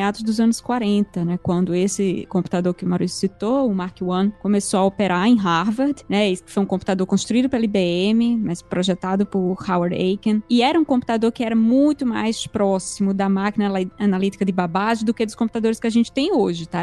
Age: 20-39